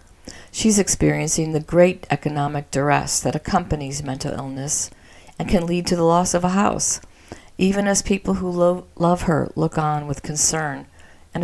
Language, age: English, 50-69